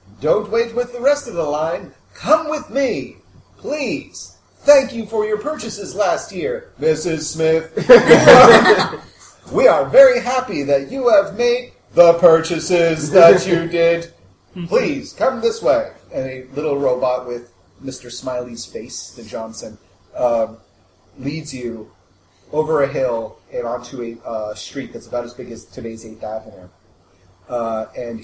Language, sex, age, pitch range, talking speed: English, male, 30-49, 120-185 Hz, 145 wpm